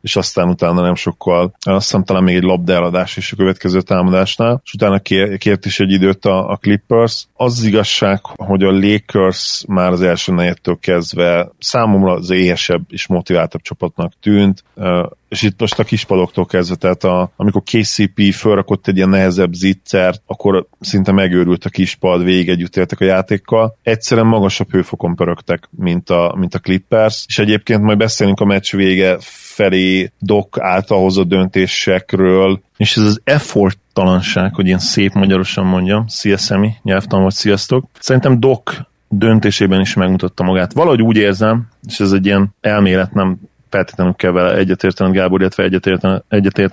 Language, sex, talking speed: Hungarian, male, 155 wpm